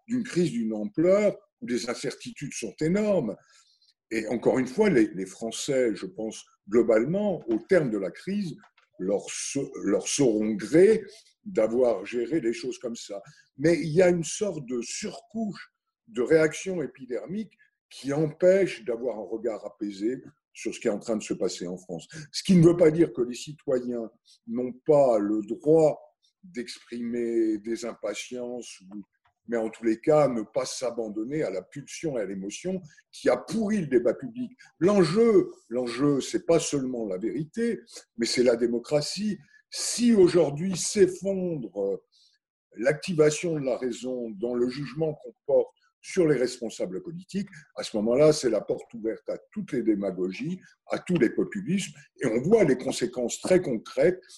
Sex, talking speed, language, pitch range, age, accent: male, 160 wpm, French, 115-190 Hz, 50-69, French